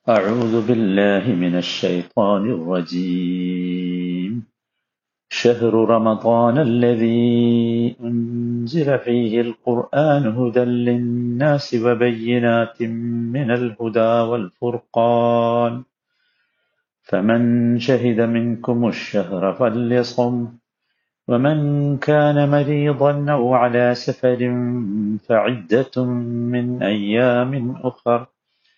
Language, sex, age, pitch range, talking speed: Malayalam, male, 50-69, 115-125 Hz, 65 wpm